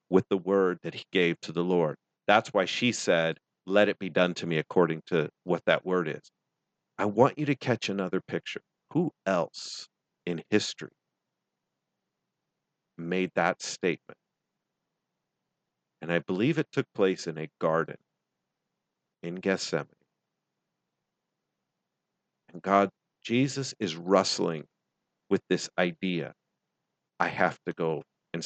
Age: 50-69